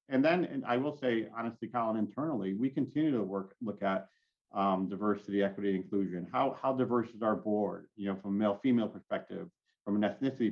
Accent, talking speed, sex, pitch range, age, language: American, 195 wpm, male, 95-110 Hz, 40-59, English